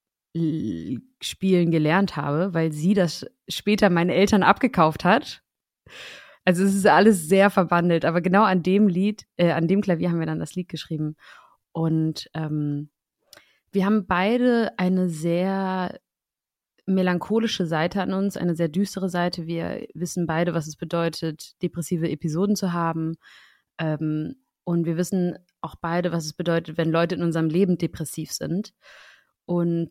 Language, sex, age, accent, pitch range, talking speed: German, female, 20-39, German, 165-190 Hz, 150 wpm